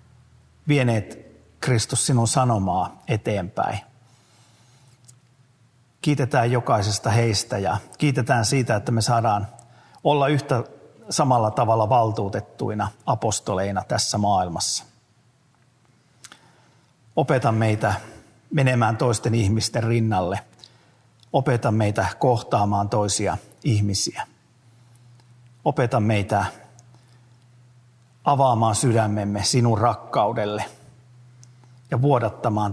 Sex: male